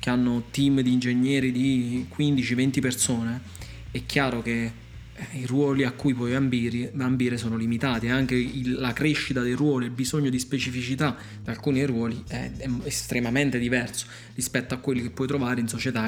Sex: male